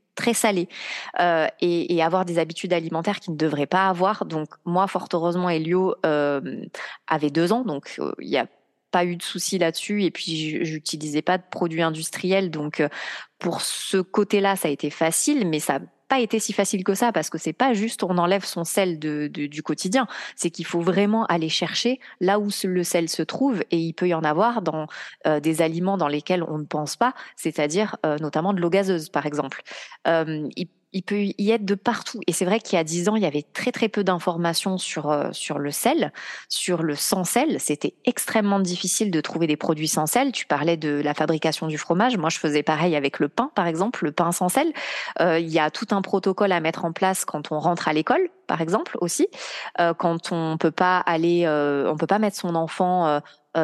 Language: French